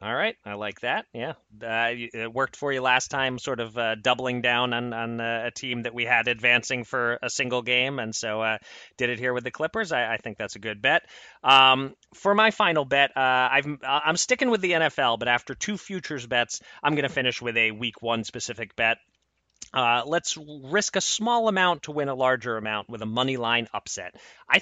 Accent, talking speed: American, 220 wpm